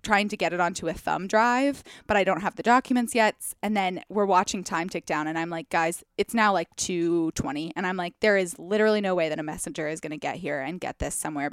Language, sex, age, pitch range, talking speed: English, female, 20-39, 180-230 Hz, 260 wpm